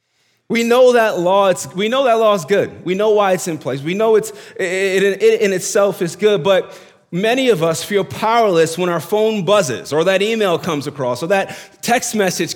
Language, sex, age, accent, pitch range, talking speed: English, male, 30-49, American, 155-215 Hz, 215 wpm